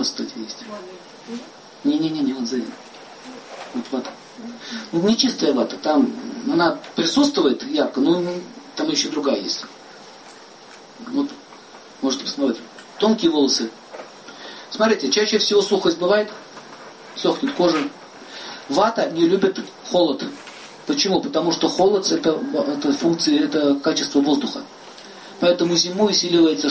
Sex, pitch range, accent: male, 170-270 Hz, native